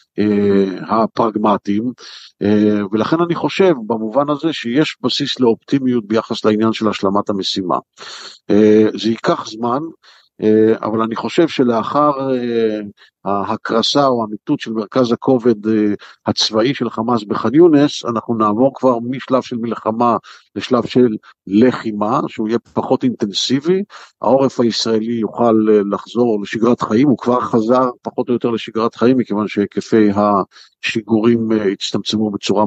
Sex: male